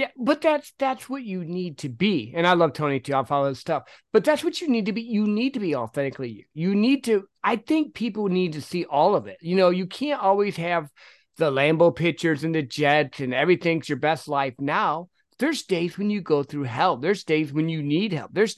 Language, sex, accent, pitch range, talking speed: English, male, American, 145-190 Hz, 240 wpm